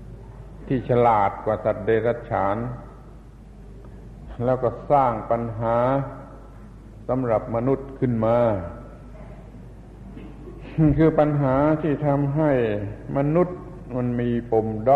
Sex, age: male, 60-79